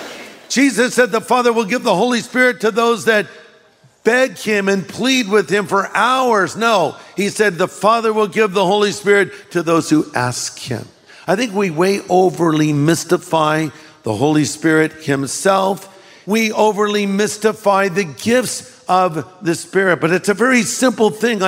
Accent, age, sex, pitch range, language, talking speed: American, 50-69, male, 155-210 Hz, English, 165 wpm